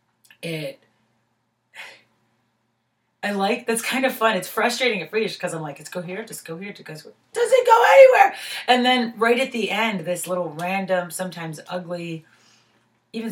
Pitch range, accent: 145-200 Hz, American